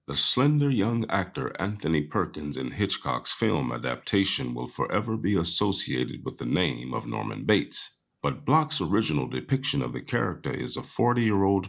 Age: 40-59